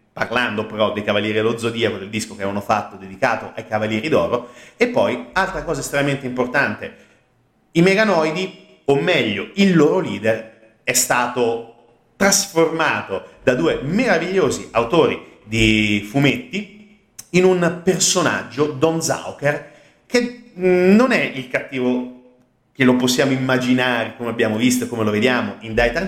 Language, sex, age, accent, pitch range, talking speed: Italian, male, 30-49, native, 110-170 Hz, 140 wpm